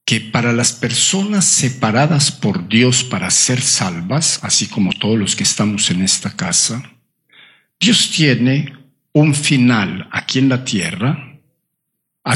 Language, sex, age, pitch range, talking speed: Spanish, male, 60-79, 110-145 Hz, 135 wpm